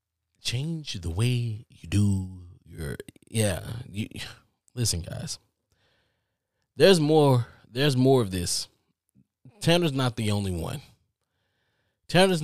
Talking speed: 100 wpm